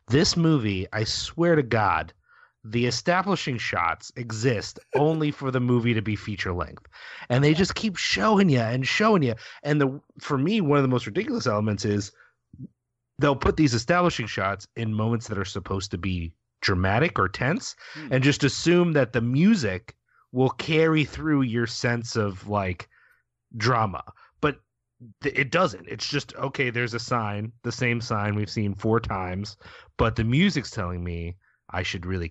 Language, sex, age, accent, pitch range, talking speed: English, male, 30-49, American, 100-140 Hz, 165 wpm